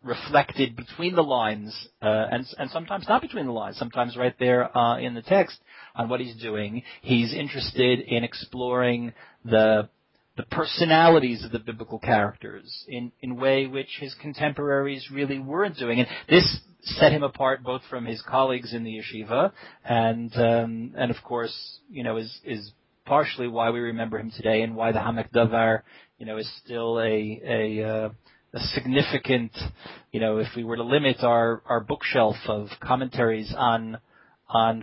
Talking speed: 170 wpm